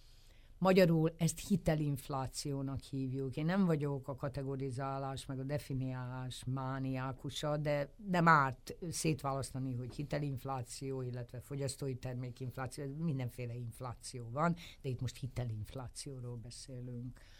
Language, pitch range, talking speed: Hungarian, 125-160 Hz, 105 wpm